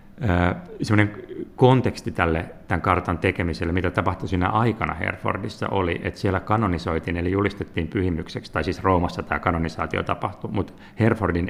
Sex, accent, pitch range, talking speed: male, native, 85-100 Hz, 135 wpm